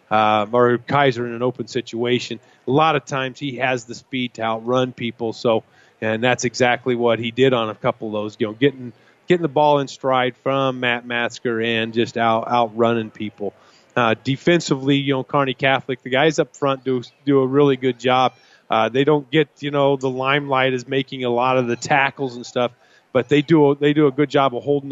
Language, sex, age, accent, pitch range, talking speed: English, male, 30-49, American, 120-140 Hz, 215 wpm